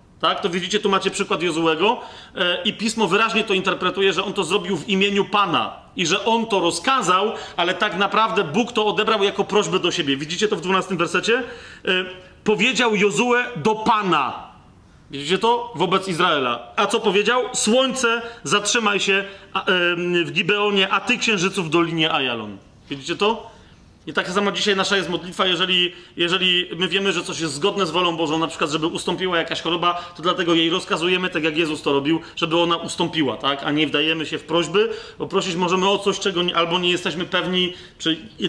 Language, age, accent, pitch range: Polish, 40-59, native, 170-210 Hz